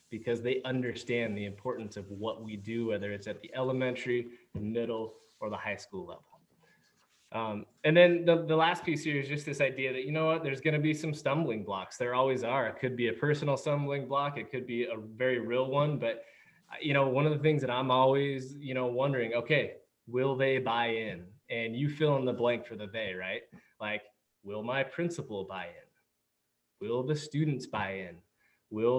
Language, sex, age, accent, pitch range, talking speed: English, male, 20-39, American, 115-145 Hz, 205 wpm